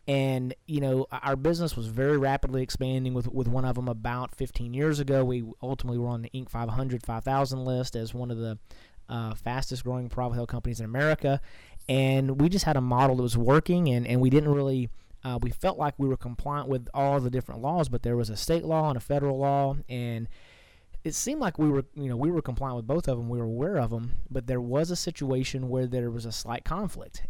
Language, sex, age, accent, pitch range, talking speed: English, male, 30-49, American, 120-140 Hz, 235 wpm